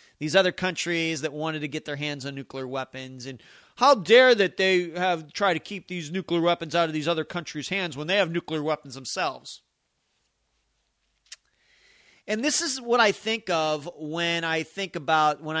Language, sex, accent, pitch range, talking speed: English, male, American, 145-200 Hz, 185 wpm